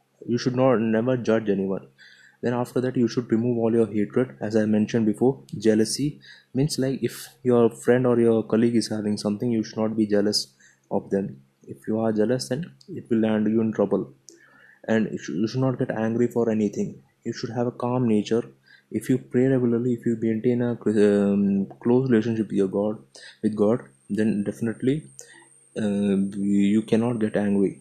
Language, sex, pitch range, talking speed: English, male, 105-120 Hz, 175 wpm